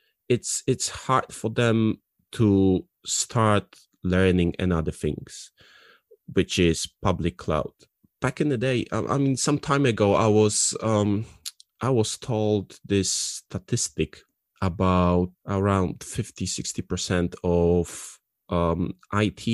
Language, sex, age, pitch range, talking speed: English, male, 20-39, 85-105 Hz, 120 wpm